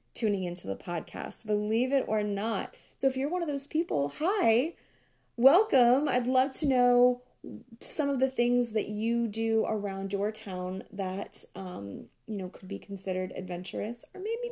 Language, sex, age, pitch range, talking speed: English, female, 20-39, 190-255 Hz, 170 wpm